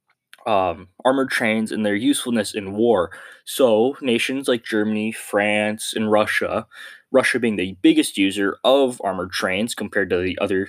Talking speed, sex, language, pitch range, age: 150 wpm, male, English, 105-140 Hz, 20-39